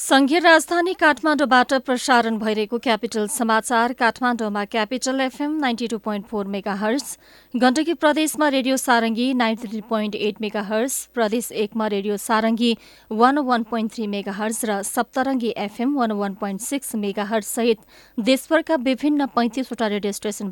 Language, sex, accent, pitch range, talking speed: English, female, Indian, 210-265 Hz, 125 wpm